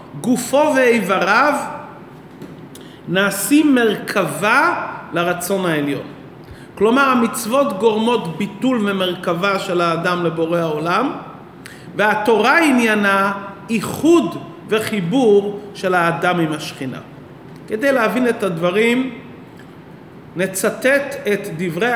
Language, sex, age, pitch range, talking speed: Hebrew, male, 40-59, 185-235 Hz, 80 wpm